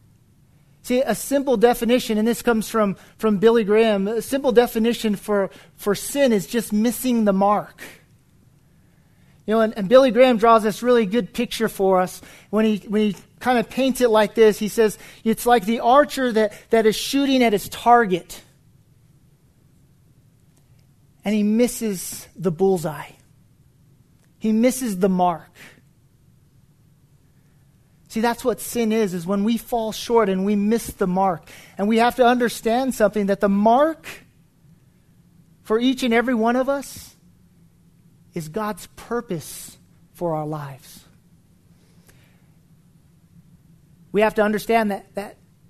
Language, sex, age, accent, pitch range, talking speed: English, male, 40-59, American, 170-235 Hz, 145 wpm